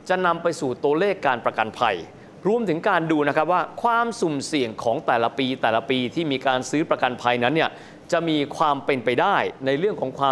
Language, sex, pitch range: Thai, male, 130-175 Hz